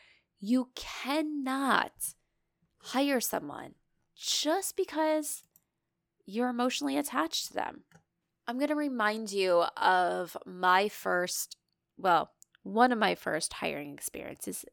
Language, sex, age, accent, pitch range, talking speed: English, female, 20-39, American, 180-245 Hz, 105 wpm